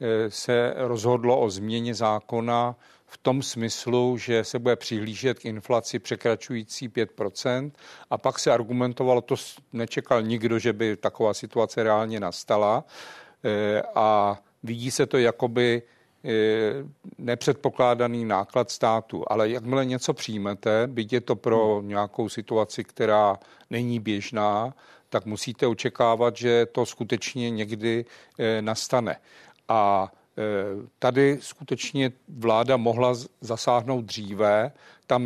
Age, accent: 50-69, native